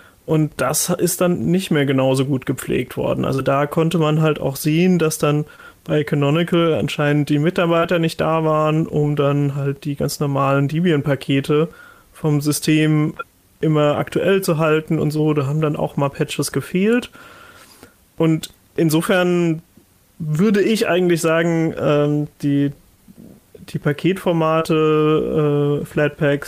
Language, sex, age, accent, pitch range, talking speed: German, male, 30-49, German, 145-170 Hz, 135 wpm